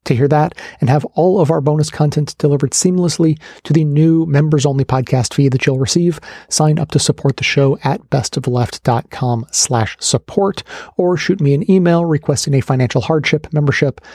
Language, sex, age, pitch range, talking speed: English, male, 30-49, 120-150 Hz, 175 wpm